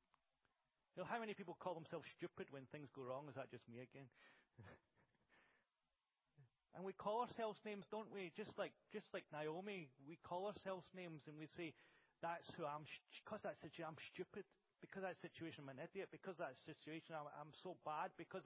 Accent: British